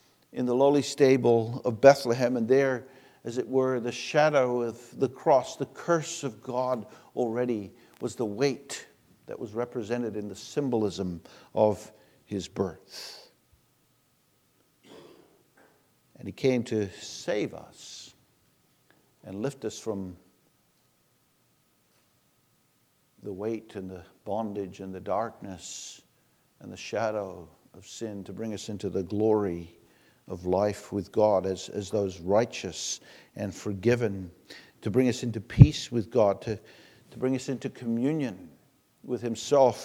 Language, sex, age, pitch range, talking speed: English, male, 50-69, 105-130 Hz, 135 wpm